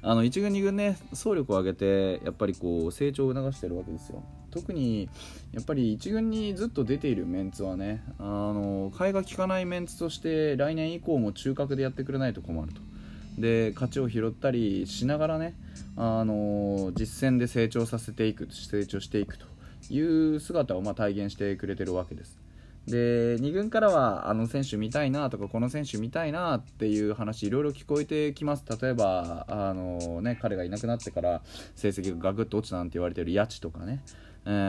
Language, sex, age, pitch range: Japanese, male, 20-39, 95-130 Hz